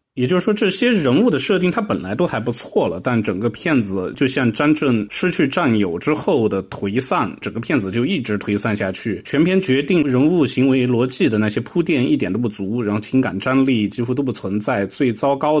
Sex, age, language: male, 20-39, Chinese